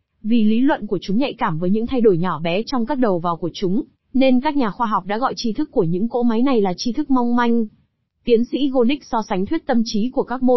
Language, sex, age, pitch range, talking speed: Vietnamese, female, 20-39, 200-250 Hz, 280 wpm